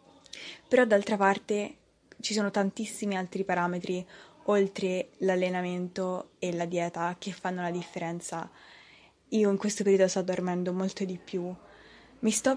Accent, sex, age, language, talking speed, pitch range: native, female, 20-39, Italian, 135 wpm, 180-210 Hz